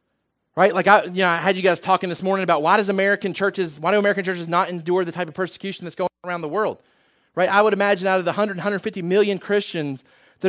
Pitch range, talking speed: 140-180 Hz, 255 wpm